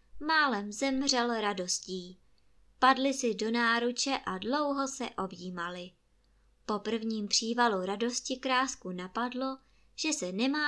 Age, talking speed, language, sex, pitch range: 20-39, 110 wpm, Czech, male, 185-255 Hz